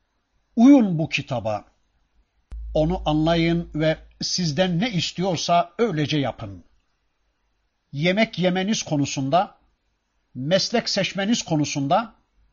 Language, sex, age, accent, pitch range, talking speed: Turkish, male, 50-69, native, 140-195 Hz, 80 wpm